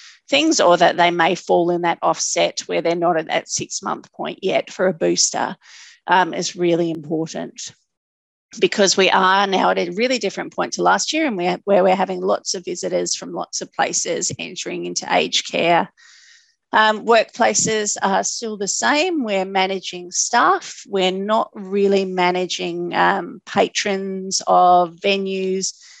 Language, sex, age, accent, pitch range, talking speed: English, female, 40-59, Australian, 175-205 Hz, 160 wpm